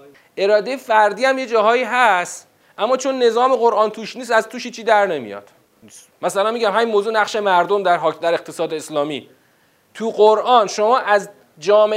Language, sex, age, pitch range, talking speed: Persian, male, 30-49, 185-245 Hz, 160 wpm